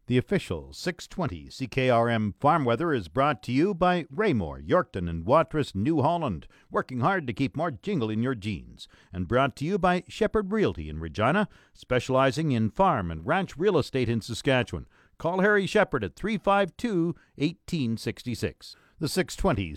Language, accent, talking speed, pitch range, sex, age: English, American, 160 wpm, 115-165 Hz, male, 50-69